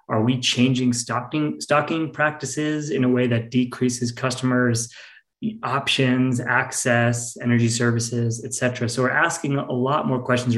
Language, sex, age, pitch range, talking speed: English, male, 20-39, 115-130 Hz, 140 wpm